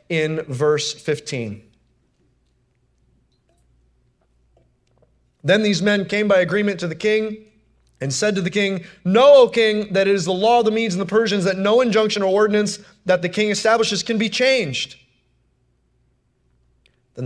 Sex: male